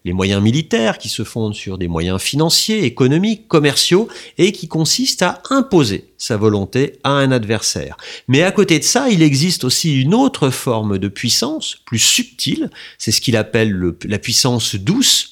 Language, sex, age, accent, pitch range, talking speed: French, male, 40-59, French, 105-155 Hz, 175 wpm